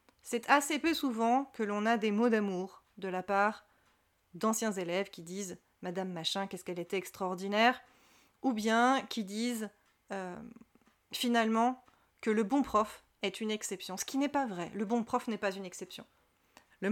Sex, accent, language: female, French, French